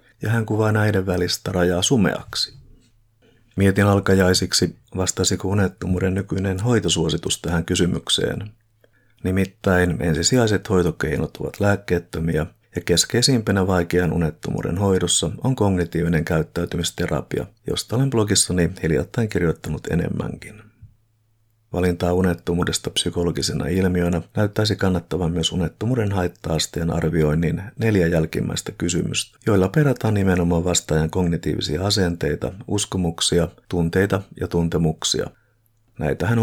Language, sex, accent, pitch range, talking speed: Finnish, male, native, 85-110 Hz, 95 wpm